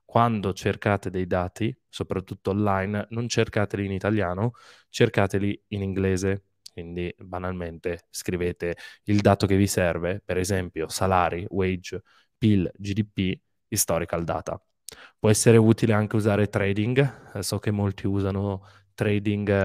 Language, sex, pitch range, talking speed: Italian, male, 95-110 Hz, 120 wpm